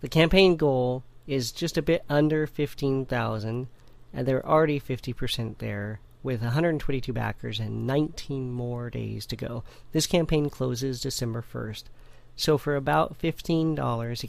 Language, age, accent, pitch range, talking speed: English, 40-59, American, 120-155 Hz, 140 wpm